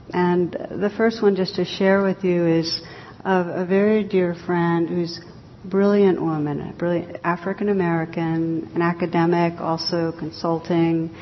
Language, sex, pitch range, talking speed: English, female, 165-185 Hz, 140 wpm